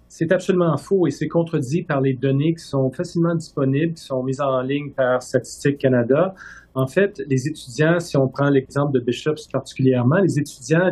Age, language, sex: 40-59, French, male